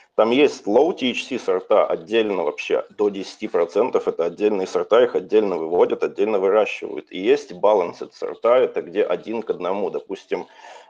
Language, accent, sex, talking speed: Russian, native, male, 150 wpm